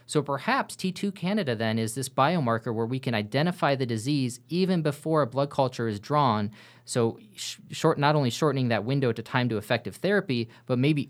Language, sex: English, male